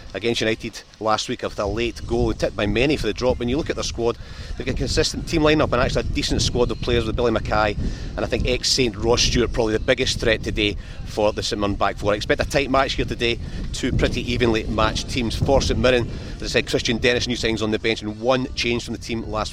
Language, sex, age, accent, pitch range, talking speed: English, male, 40-59, British, 105-120 Hz, 260 wpm